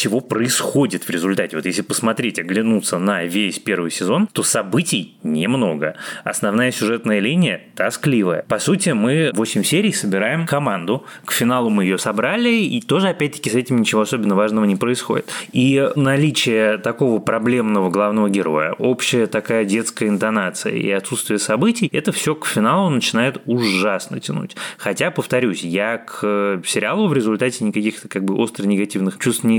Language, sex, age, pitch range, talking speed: Russian, male, 20-39, 100-125 Hz, 150 wpm